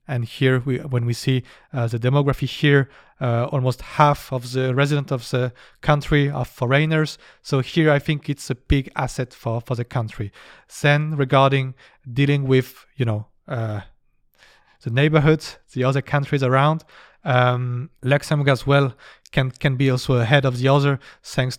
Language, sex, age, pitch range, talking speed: English, male, 30-49, 125-145 Hz, 165 wpm